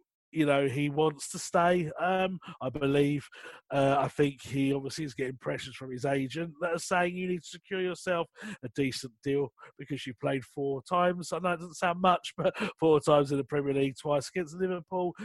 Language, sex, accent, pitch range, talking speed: English, male, British, 140-180 Hz, 205 wpm